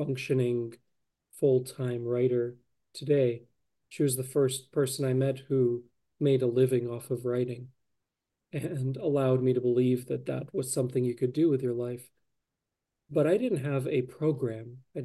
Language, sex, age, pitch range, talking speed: English, male, 40-59, 120-145 Hz, 160 wpm